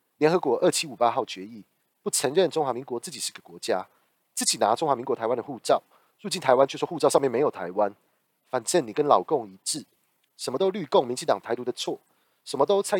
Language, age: Chinese, 30-49